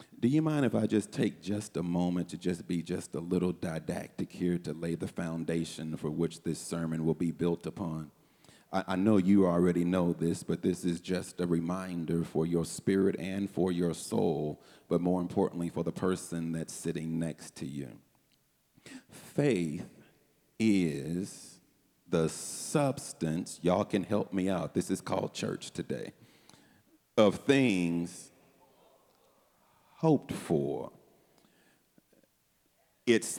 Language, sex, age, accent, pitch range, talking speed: English, male, 40-59, American, 85-95 Hz, 145 wpm